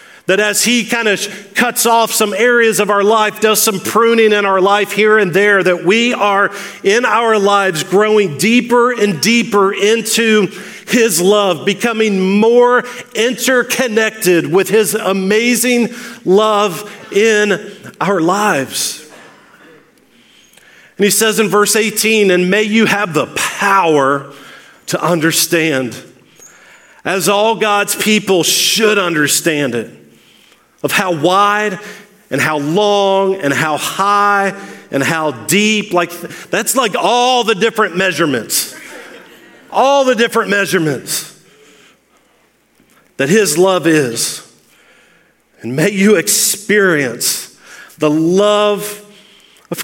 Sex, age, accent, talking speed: male, 40-59, American, 120 wpm